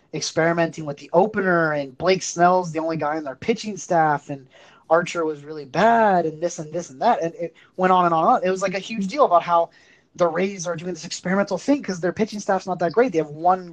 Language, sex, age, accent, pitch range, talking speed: English, male, 20-39, American, 150-185 Hz, 260 wpm